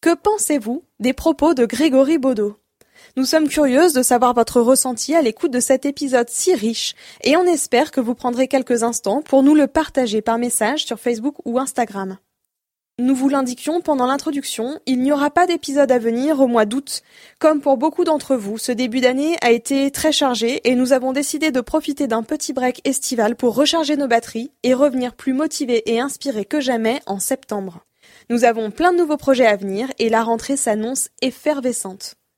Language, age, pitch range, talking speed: French, 20-39, 235-295 Hz, 190 wpm